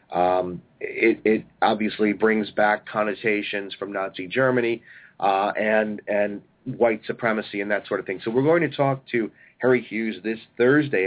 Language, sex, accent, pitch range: English, male, American, 100-115 Hz